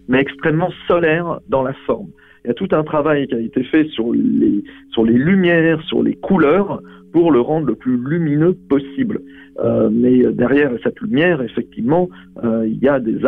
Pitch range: 120-155 Hz